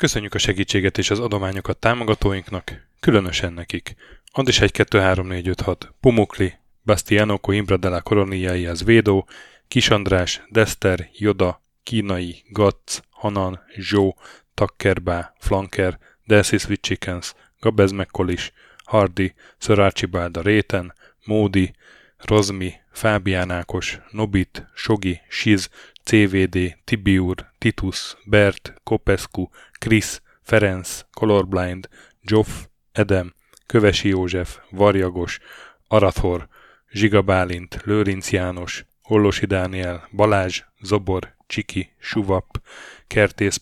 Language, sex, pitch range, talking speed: Hungarian, male, 90-105 Hz, 90 wpm